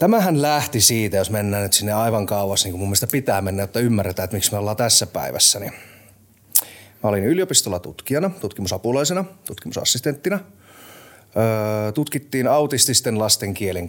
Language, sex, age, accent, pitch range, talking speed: Finnish, male, 30-49, native, 105-145 Hz, 135 wpm